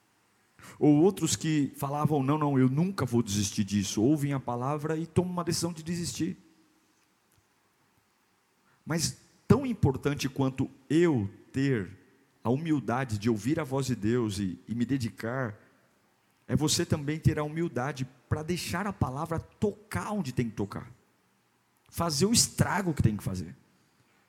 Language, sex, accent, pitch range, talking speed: Portuguese, male, Brazilian, 115-165 Hz, 150 wpm